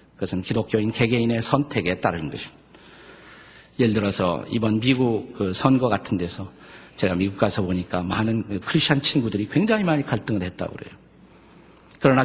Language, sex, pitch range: Korean, male, 100-140 Hz